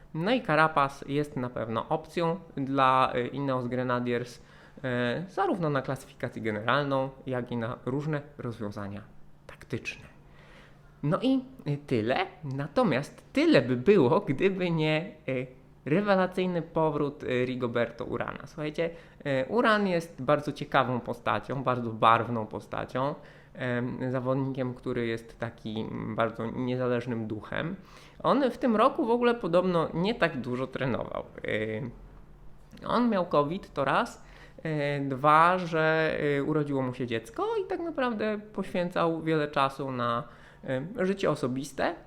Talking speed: 115 wpm